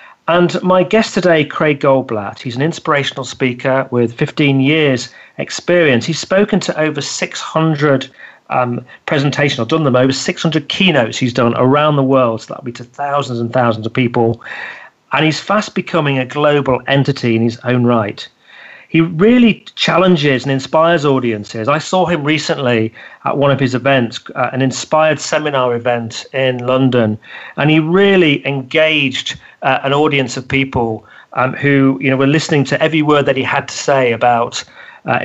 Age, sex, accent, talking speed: 40-59, male, British, 170 wpm